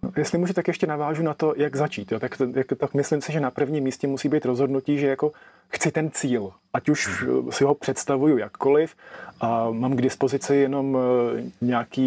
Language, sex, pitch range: Czech, male, 125-145 Hz